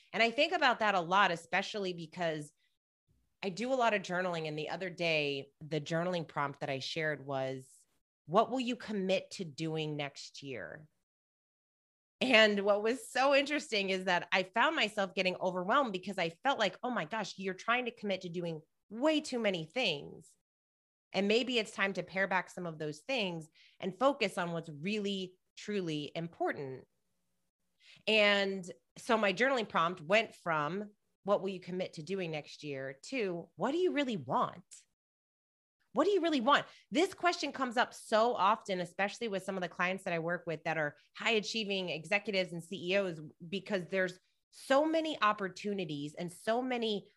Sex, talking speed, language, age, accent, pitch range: female, 175 wpm, English, 30-49, American, 165-220 Hz